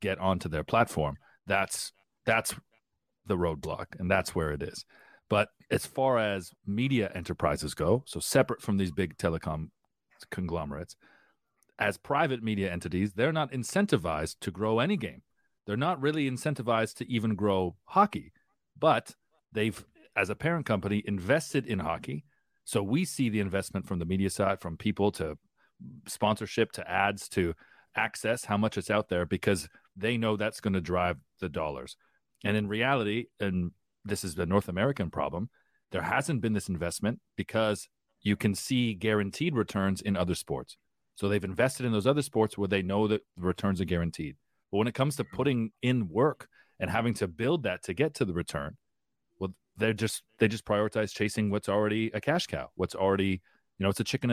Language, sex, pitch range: English, male, 95-115 Hz